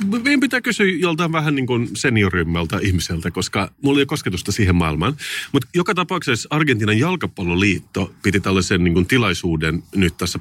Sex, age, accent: male, 30-49, native